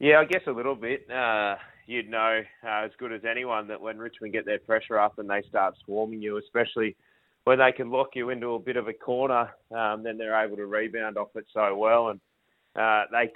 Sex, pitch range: male, 105-120 Hz